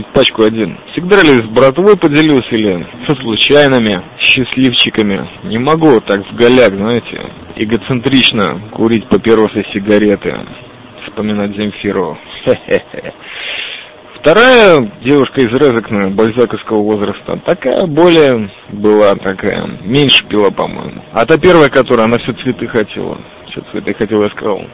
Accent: native